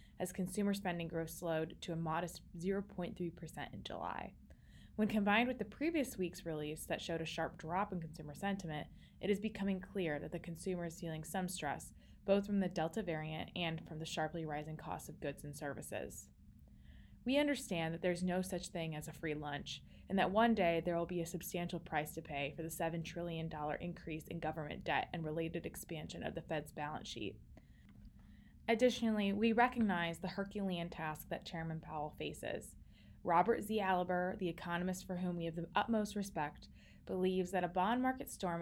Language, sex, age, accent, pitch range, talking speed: English, female, 20-39, American, 160-190 Hz, 185 wpm